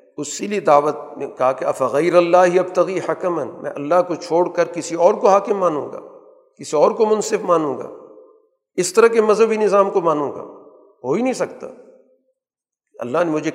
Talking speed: 185 wpm